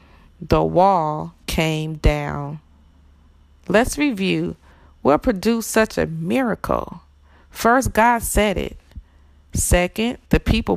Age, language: 40-59, English